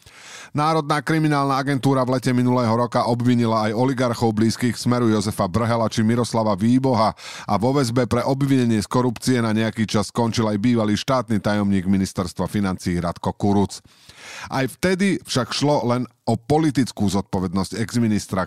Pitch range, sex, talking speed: 105-130 Hz, male, 145 wpm